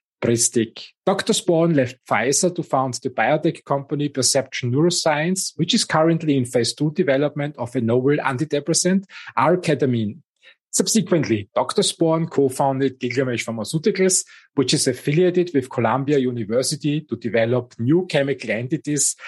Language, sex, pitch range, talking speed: English, male, 125-175 Hz, 125 wpm